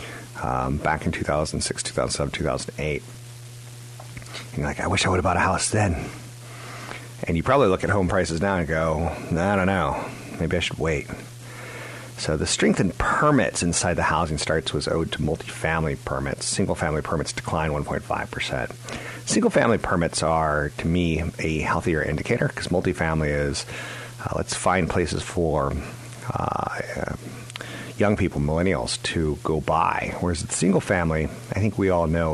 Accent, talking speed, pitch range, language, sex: American, 160 wpm, 80-120 Hz, English, male